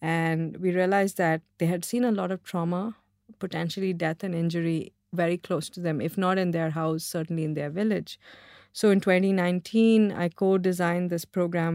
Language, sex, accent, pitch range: English, female, Indian, 170-195 Hz